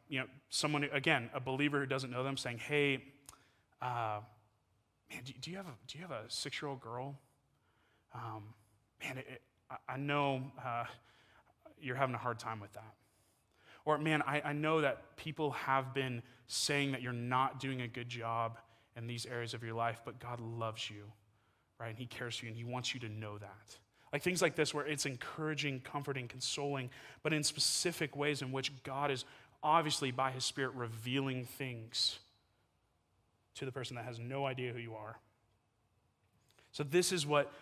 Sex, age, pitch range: male, 30-49, 115-145 Hz